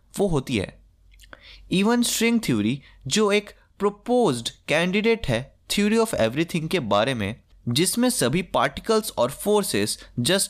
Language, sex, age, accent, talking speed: Hindi, male, 20-39, native, 130 wpm